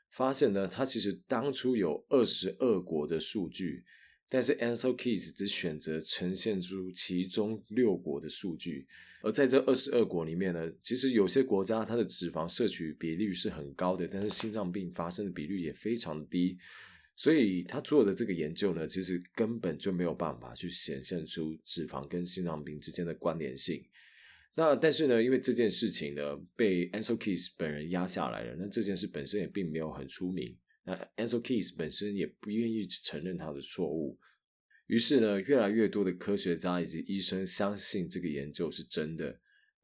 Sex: male